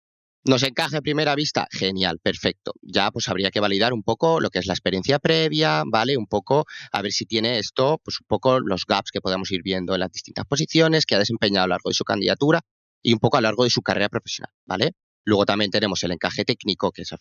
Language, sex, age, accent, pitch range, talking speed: Spanish, male, 30-49, Spanish, 95-120 Hz, 245 wpm